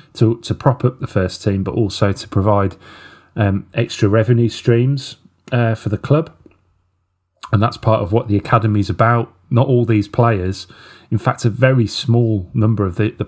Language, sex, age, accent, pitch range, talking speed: English, male, 30-49, British, 95-115 Hz, 180 wpm